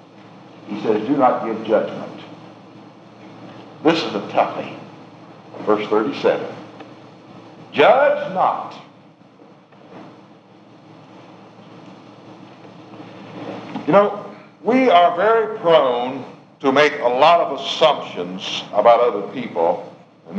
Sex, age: male, 60-79